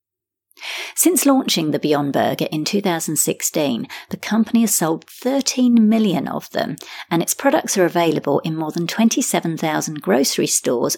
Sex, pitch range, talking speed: female, 165-230 Hz, 140 wpm